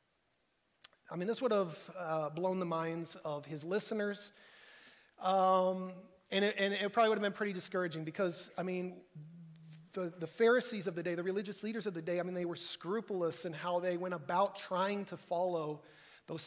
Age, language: 30-49, English